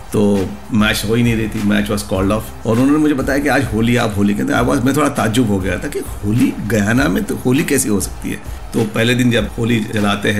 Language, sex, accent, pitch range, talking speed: English, male, Indian, 105-125 Hz, 180 wpm